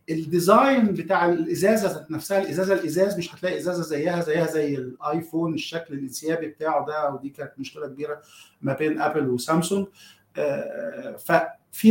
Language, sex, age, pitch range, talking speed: Arabic, male, 50-69, 155-215 Hz, 135 wpm